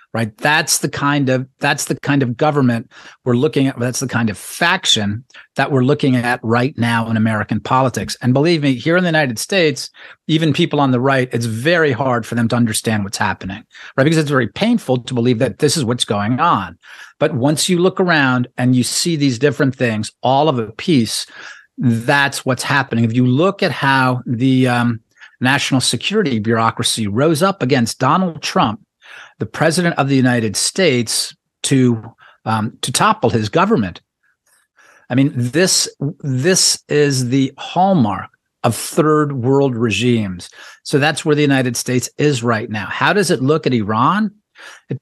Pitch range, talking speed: 120-150 Hz, 180 wpm